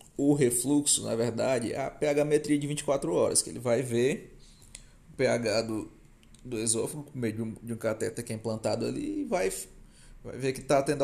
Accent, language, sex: Brazilian, Portuguese, male